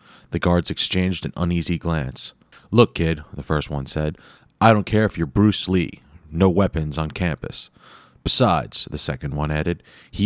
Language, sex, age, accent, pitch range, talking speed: English, male, 30-49, American, 80-95 Hz, 170 wpm